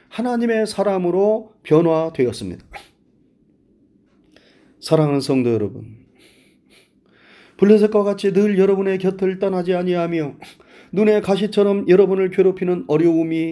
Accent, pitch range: native, 145-200 Hz